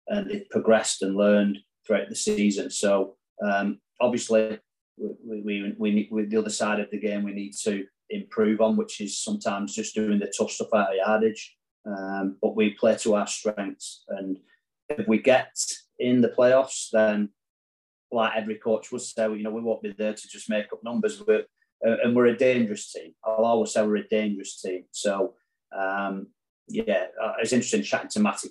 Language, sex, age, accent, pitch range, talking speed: English, male, 30-49, British, 100-120 Hz, 190 wpm